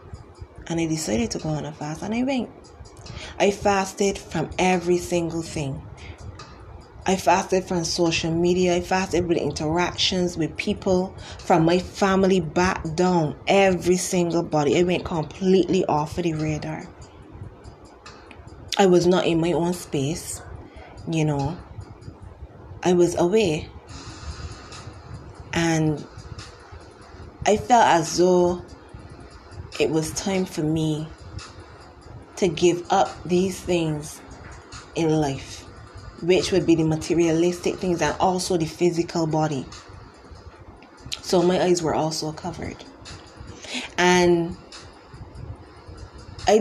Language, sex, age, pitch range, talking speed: English, female, 20-39, 140-180 Hz, 115 wpm